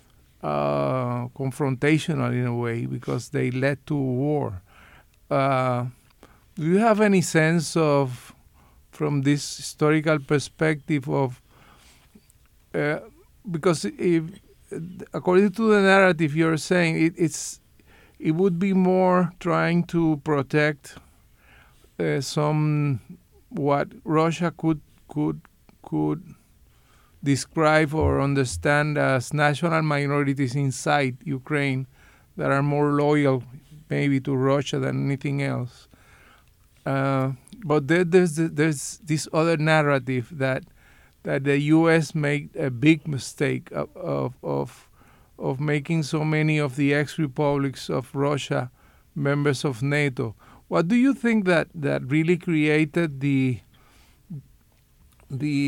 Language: Spanish